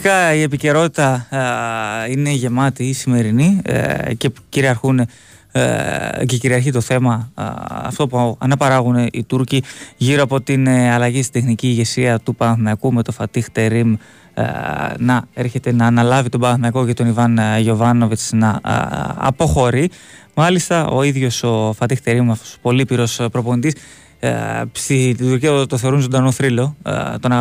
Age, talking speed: 20-39, 145 wpm